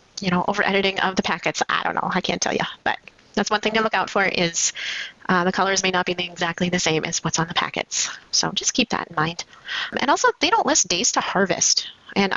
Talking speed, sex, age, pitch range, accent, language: 250 wpm, female, 30-49, 180-230 Hz, American, English